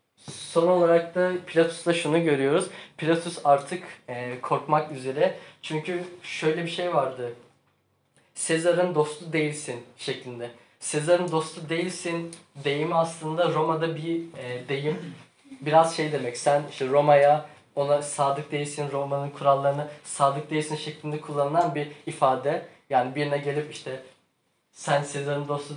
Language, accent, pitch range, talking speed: Turkish, native, 140-165 Hz, 120 wpm